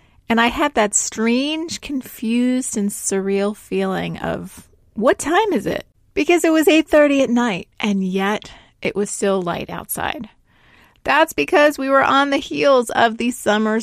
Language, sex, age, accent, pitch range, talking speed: English, female, 30-49, American, 205-270 Hz, 160 wpm